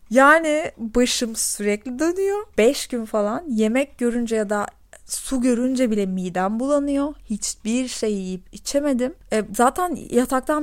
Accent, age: native, 30-49